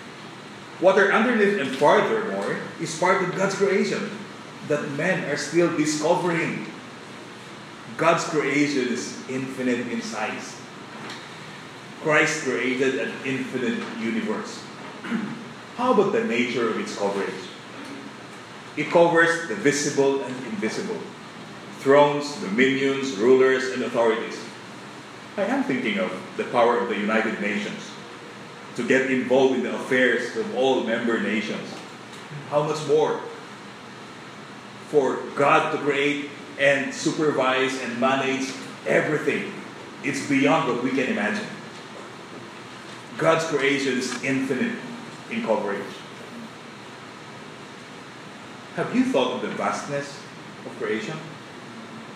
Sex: male